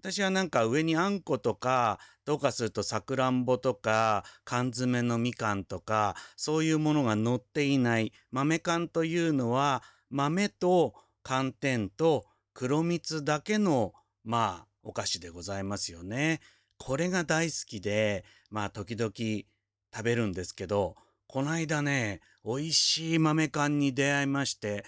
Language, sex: Japanese, male